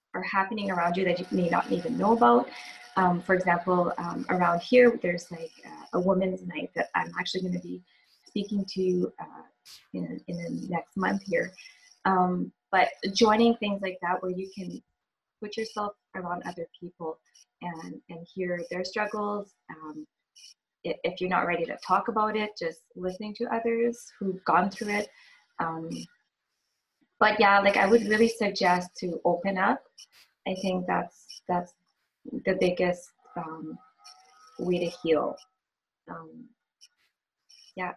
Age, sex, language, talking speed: 20-39, female, English, 155 wpm